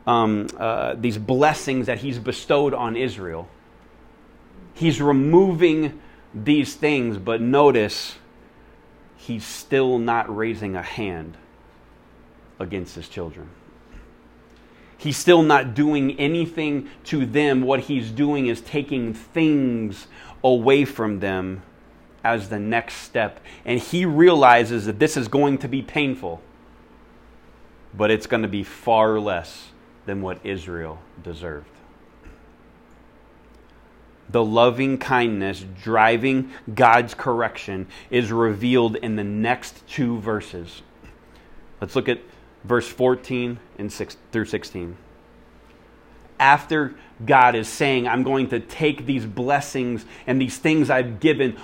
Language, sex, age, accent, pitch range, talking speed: English, male, 30-49, American, 105-135 Hz, 115 wpm